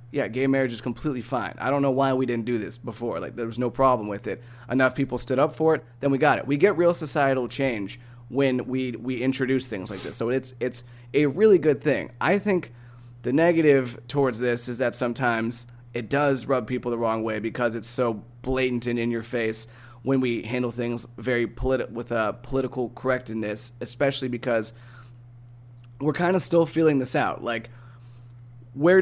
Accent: American